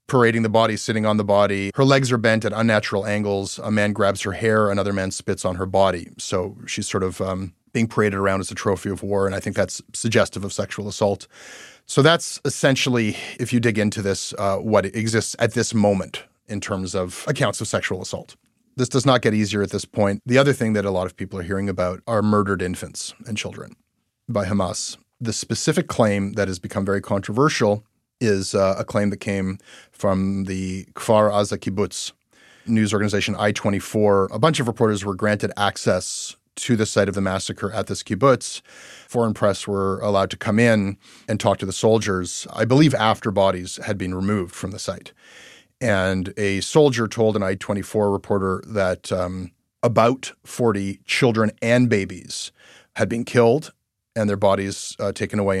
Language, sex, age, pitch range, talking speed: English, male, 30-49, 95-115 Hz, 190 wpm